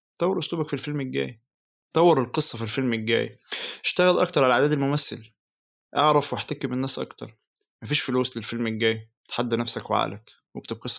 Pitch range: 100-140 Hz